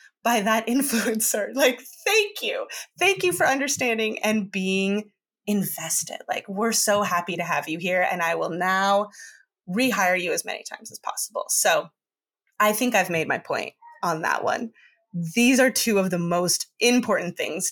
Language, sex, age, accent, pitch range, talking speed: English, female, 20-39, American, 175-235 Hz, 170 wpm